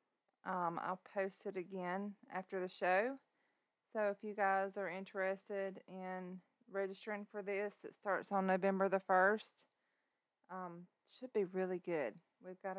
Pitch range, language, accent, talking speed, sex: 170-210 Hz, English, American, 145 wpm, female